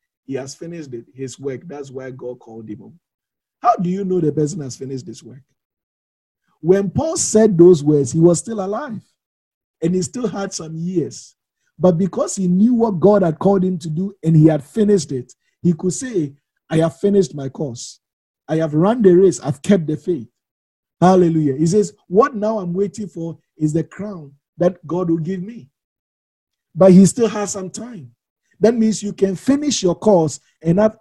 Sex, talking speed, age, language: male, 190 wpm, 50-69, English